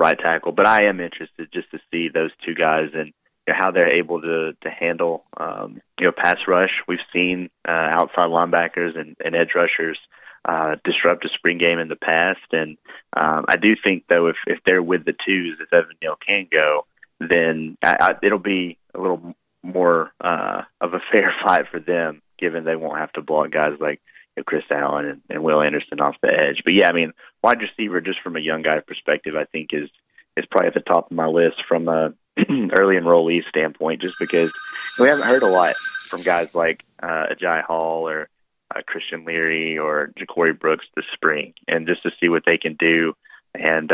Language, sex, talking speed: English, male, 200 wpm